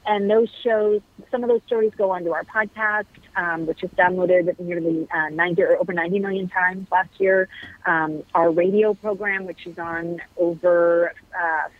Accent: American